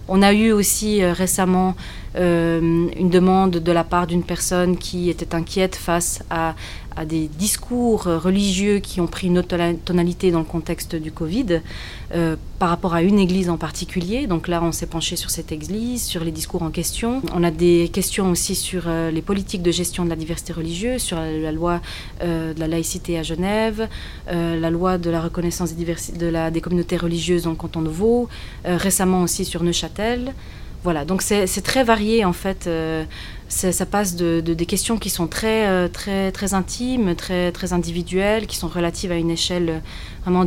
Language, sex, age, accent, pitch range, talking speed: French, female, 30-49, French, 165-190 Hz, 200 wpm